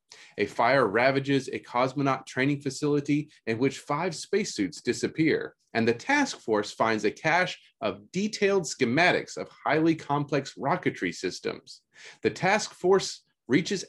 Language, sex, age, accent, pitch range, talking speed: English, male, 30-49, American, 125-180 Hz, 135 wpm